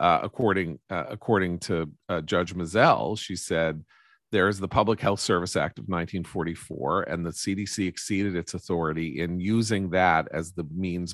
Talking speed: 165 wpm